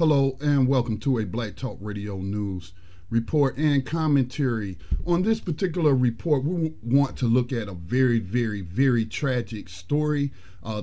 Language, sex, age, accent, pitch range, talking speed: English, male, 40-59, American, 110-145 Hz, 155 wpm